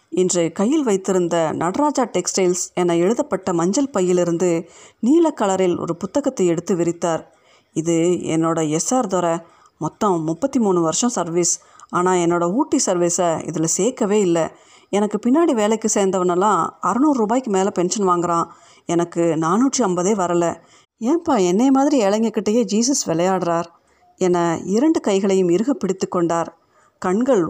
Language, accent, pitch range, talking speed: Tamil, native, 175-225 Hz, 120 wpm